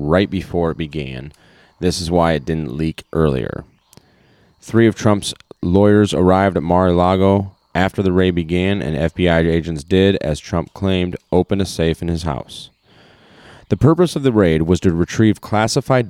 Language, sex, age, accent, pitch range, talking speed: English, male, 30-49, American, 80-100 Hz, 165 wpm